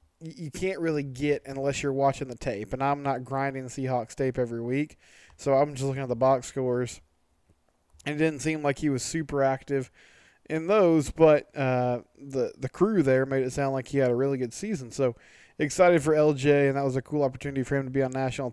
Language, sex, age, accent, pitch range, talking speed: English, male, 20-39, American, 130-155 Hz, 225 wpm